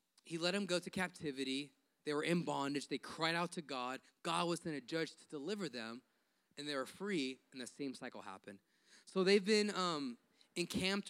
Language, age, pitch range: English, 20-39, 150-205 Hz